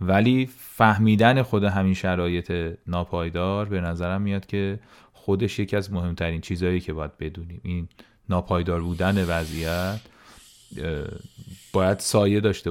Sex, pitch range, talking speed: male, 90-110 Hz, 120 wpm